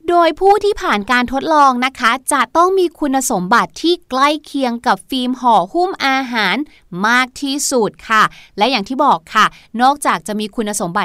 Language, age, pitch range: Thai, 20-39, 230-305 Hz